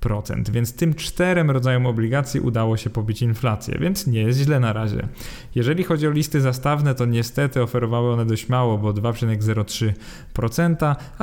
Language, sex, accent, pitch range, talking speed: Polish, male, native, 110-130 Hz, 150 wpm